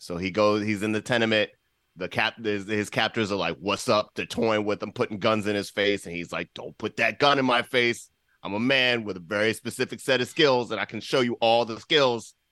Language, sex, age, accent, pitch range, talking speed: English, male, 30-49, American, 95-115 Hz, 255 wpm